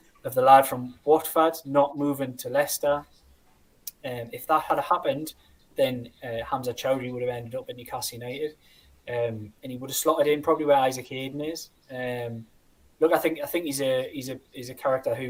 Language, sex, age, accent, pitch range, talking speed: English, male, 10-29, British, 125-170 Hz, 205 wpm